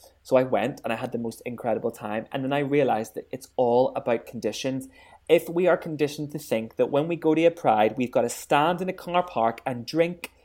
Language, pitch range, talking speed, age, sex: English, 130-170 Hz, 240 wpm, 20-39, male